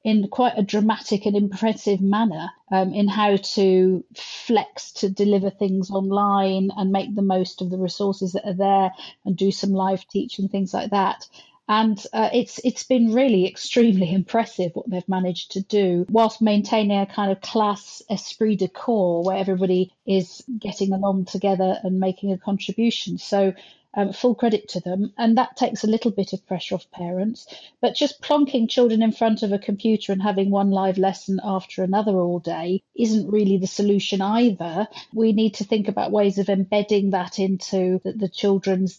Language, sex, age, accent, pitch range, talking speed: English, female, 40-59, British, 190-220 Hz, 180 wpm